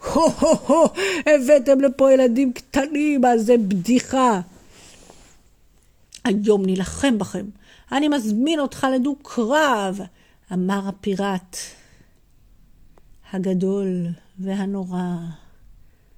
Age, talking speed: 50-69, 80 wpm